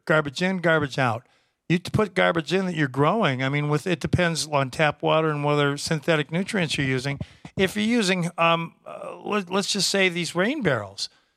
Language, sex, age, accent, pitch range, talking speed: English, male, 50-69, American, 150-195 Hz, 195 wpm